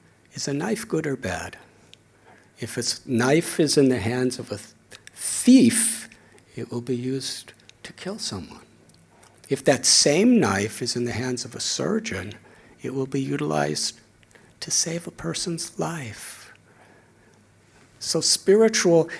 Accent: American